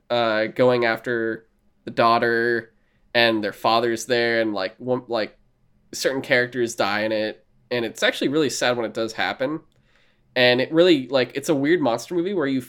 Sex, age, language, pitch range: male, 20-39, English, 110-125 Hz